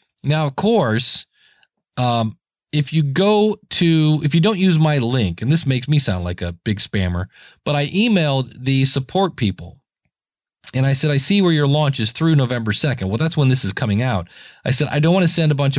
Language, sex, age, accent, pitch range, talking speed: English, male, 40-59, American, 110-150 Hz, 215 wpm